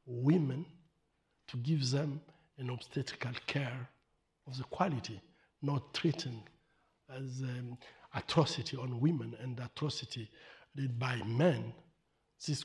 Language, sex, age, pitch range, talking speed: English, male, 60-79, 120-150 Hz, 115 wpm